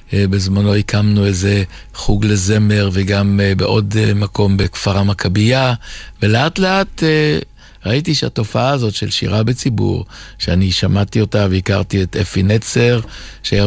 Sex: male